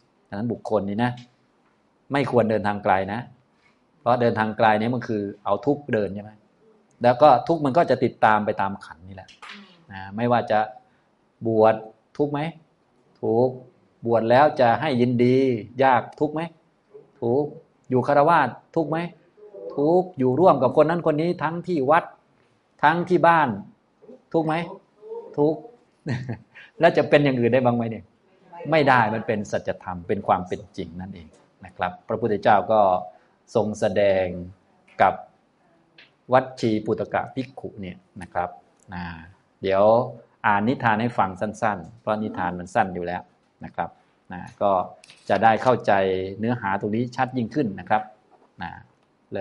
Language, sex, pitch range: Thai, male, 105-150 Hz